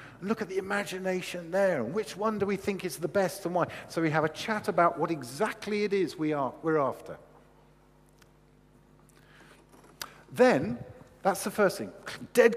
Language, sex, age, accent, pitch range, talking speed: English, male, 50-69, British, 150-205 Hz, 165 wpm